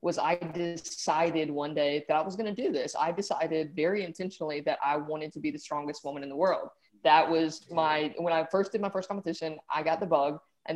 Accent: American